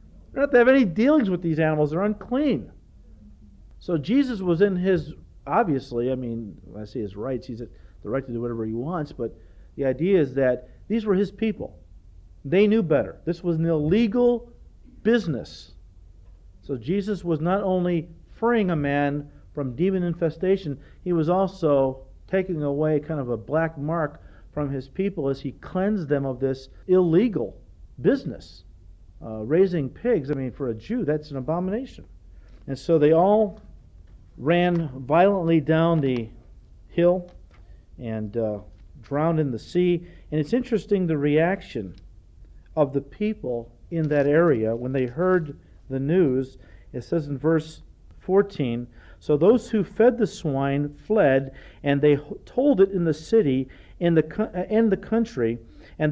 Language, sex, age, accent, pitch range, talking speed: English, male, 50-69, American, 120-185 Hz, 160 wpm